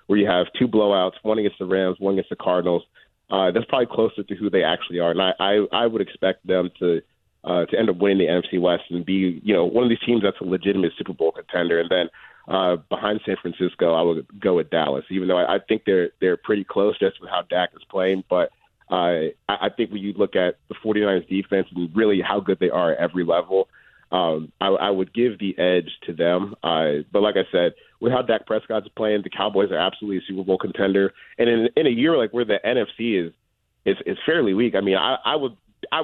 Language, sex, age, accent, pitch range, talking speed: English, male, 30-49, American, 90-105 Hz, 245 wpm